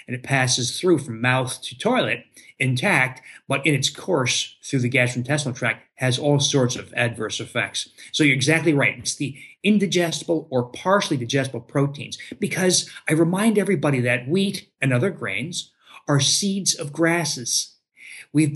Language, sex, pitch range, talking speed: English, male, 125-165 Hz, 155 wpm